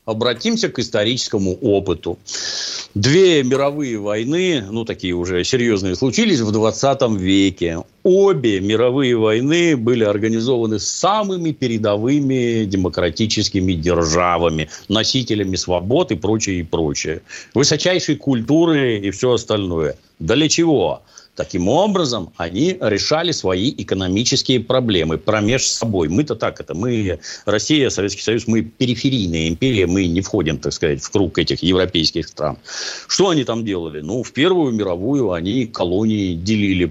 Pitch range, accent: 90-125 Hz, native